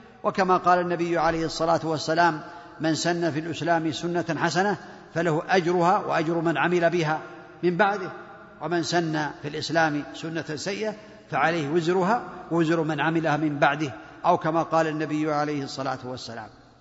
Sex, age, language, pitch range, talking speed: male, 50-69, Arabic, 170-215 Hz, 145 wpm